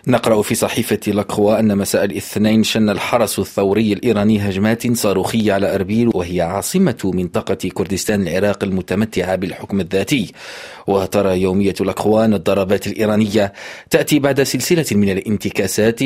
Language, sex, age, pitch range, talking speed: Arabic, male, 40-59, 100-120 Hz, 125 wpm